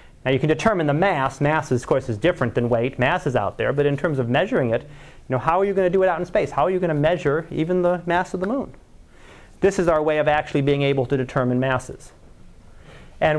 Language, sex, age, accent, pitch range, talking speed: English, male, 30-49, American, 135-175 Hz, 270 wpm